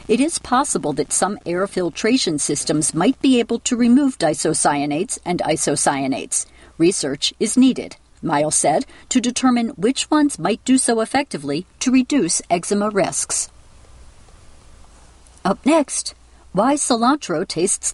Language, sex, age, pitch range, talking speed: English, female, 50-69, 180-270 Hz, 125 wpm